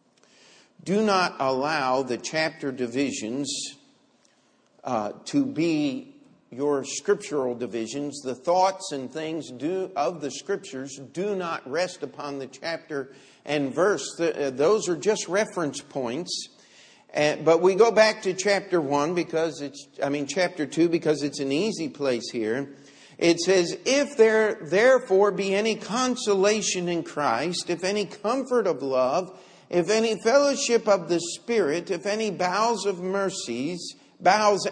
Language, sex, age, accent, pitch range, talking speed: English, male, 50-69, American, 135-195 Hz, 140 wpm